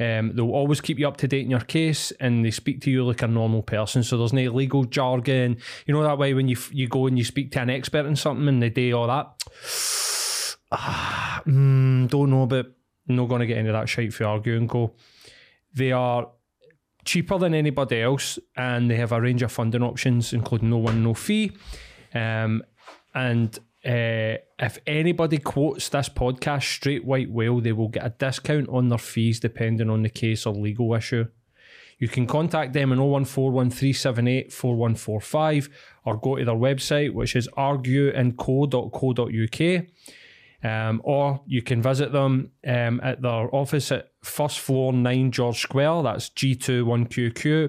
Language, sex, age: English, male, 20-39